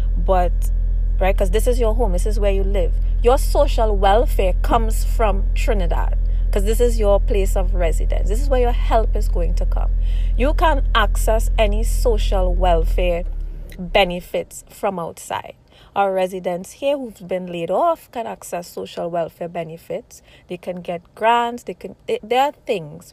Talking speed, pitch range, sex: 165 wpm, 170-220 Hz, female